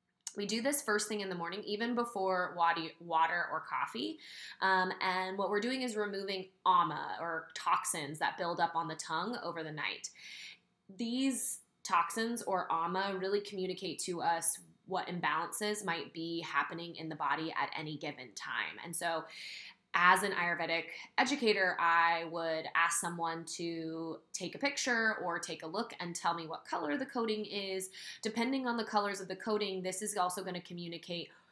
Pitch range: 170-210 Hz